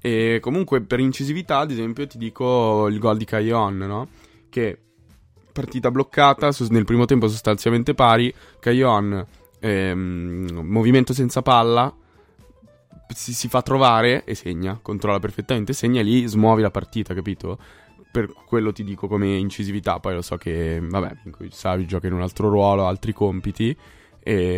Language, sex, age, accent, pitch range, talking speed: Italian, male, 20-39, native, 95-110 Hz, 150 wpm